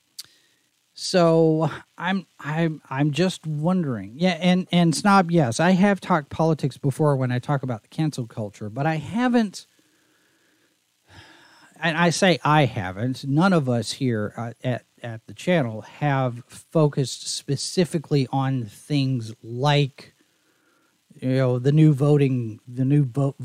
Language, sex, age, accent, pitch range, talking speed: English, male, 40-59, American, 115-160 Hz, 135 wpm